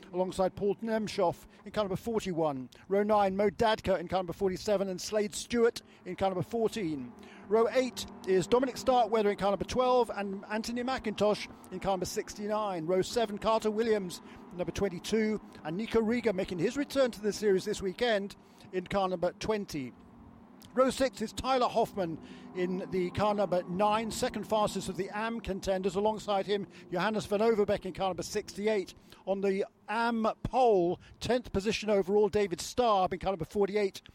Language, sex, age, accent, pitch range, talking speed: English, male, 50-69, British, 185-225 Hz, 170 wpm